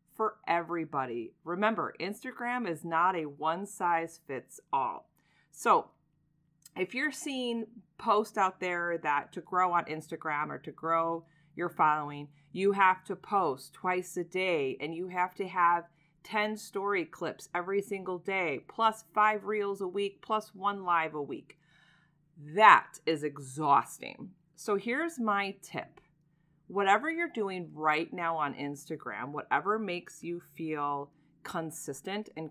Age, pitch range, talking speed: 40-59, 160-215 Hz, 140 wpm